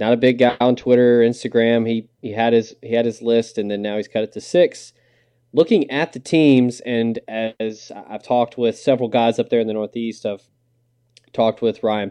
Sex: male